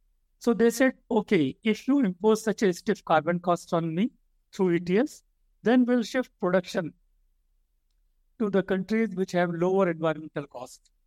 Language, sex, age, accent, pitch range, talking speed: English, male, 60-79, Indian, 160-215 Hz, 150 wpm